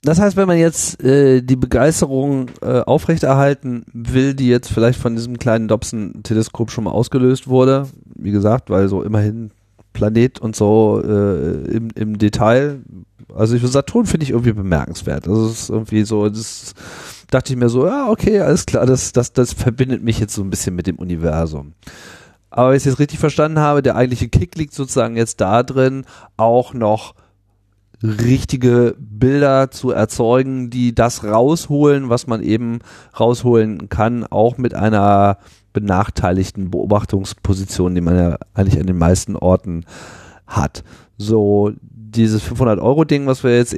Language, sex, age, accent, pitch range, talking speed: German, male, 40-59, German, 105-125 Hz, 160 wpm